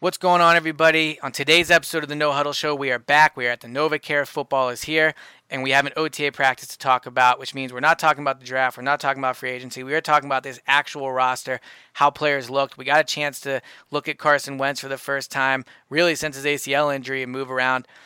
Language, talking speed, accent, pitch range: English, 255 wpm, American, 130-150 Hz